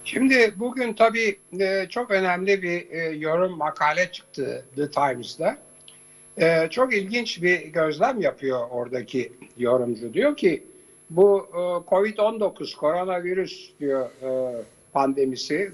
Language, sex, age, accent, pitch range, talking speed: Turkish, male, 60-79, native, 145-210 Hz, 90 wpm